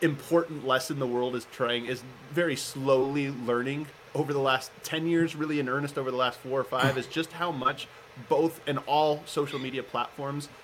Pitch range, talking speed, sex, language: 130-160 Hz, 190 wpm, male, English